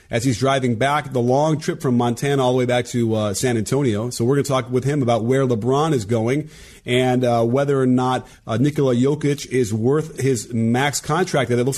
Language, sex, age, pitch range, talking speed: English, male, 30-49, 125-150 Hz, 230 wpm